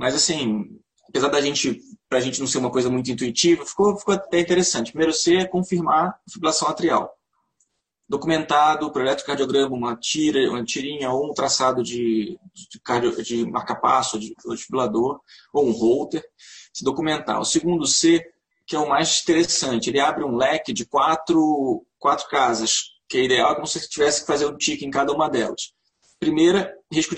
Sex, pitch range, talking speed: male, 130-170 Hz, 175 wpm